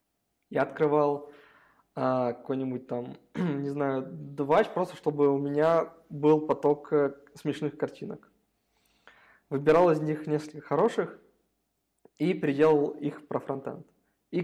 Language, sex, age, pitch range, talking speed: Russian, male, 20-39, 140-165 Hz, 110 wpm